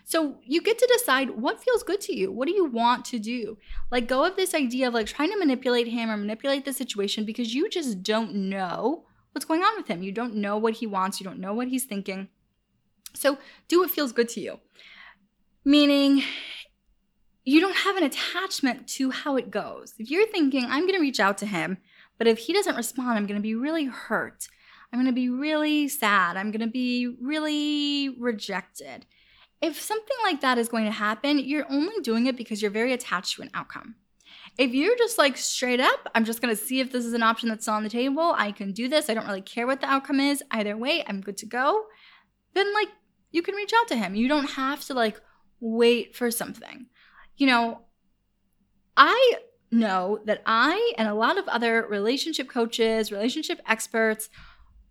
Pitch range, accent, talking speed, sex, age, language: 220-295 Hz, American, 210 wpm, female, 10-29, English